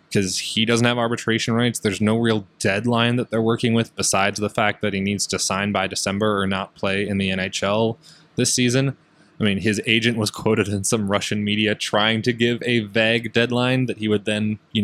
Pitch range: 95-110 Hz